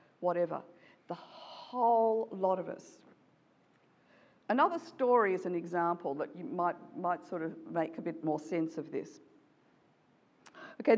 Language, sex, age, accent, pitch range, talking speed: English, female, 50-69, Australian, 175-245 Hz, 135 wpm